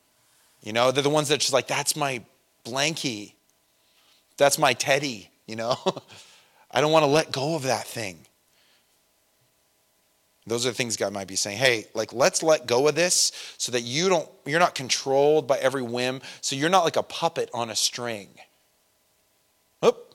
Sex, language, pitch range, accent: male, English, 125-165 Hz, American